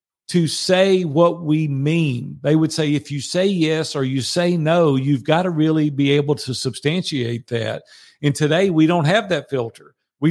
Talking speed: 190 wpm